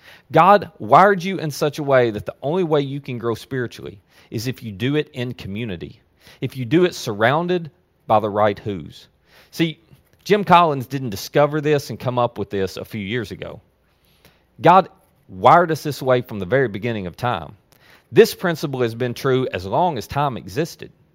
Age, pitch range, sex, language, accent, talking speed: 40-59, 115-160 Hz, male, English, American, 190 wpm